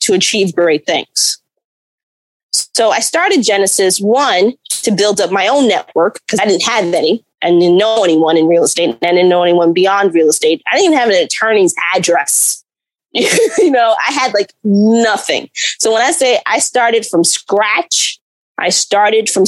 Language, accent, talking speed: English, American, 180 wpm